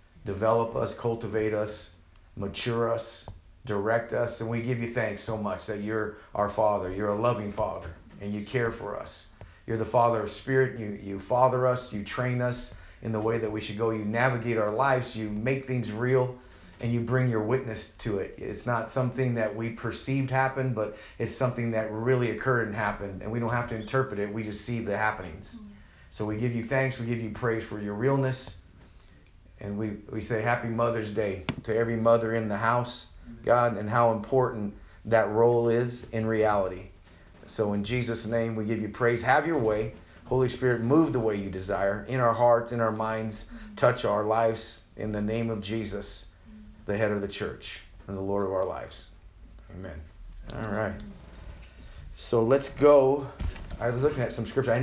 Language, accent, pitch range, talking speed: English, American, 100-120 Hz, 195 wpm